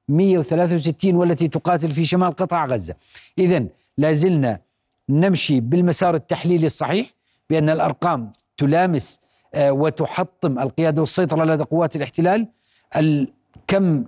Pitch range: 150-180 Hz